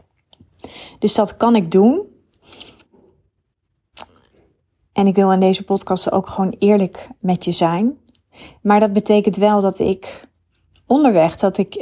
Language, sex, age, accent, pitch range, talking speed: Dutch, female, 30-49, Dutch, 190-225 Hz, 130 wpm